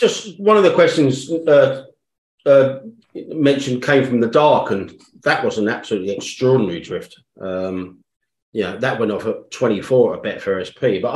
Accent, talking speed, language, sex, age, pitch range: British, 170 wpm, English, male, 40-59, 110-140 Hz